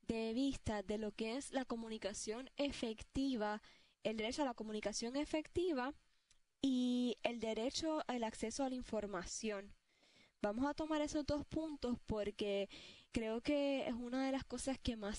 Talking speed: 155 wpm